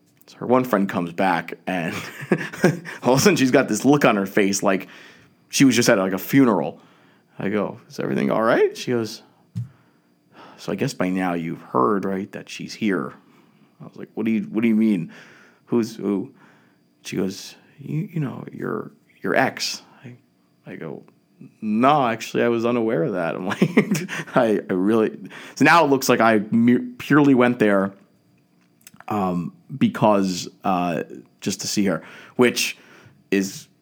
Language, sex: English, male